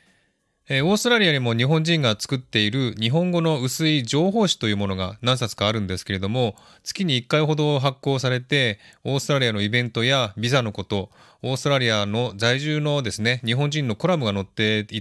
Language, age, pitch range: Japanese, 20-39, 105-145 Hz